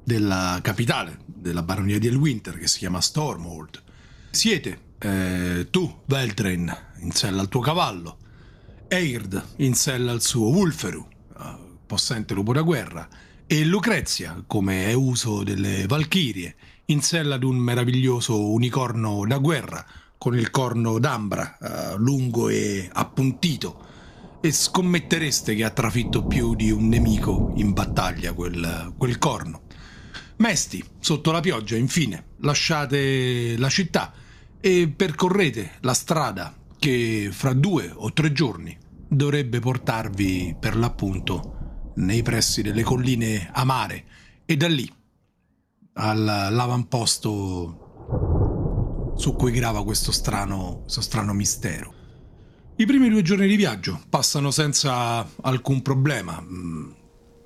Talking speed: 120 wpm